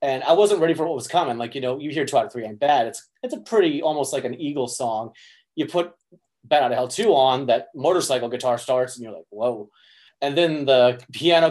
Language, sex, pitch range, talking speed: English, male, 125-150 Hz, 250 wpm